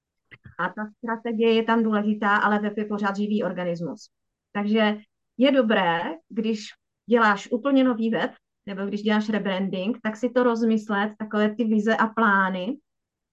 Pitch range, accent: 200-235 Hz, native